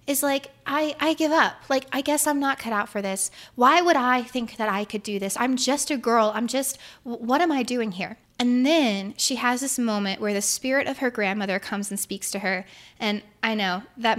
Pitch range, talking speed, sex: 210-265 Hz, 235 wpm, female